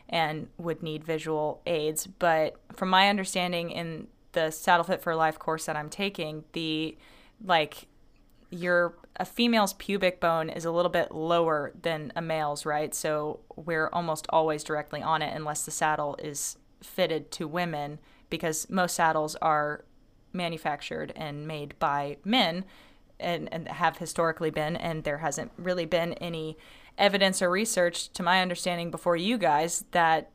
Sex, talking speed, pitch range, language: female, 155 wpm, 160-185 Hz, English